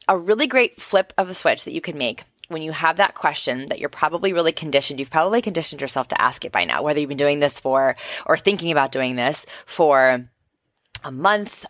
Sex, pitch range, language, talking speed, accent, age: female, 140-190 Hz, English, 230 wpm, American, 20-39